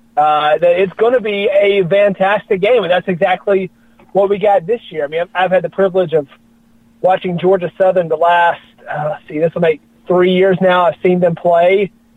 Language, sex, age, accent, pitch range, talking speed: English, male, 30-49, American, 160-195 Hz, 210 wpm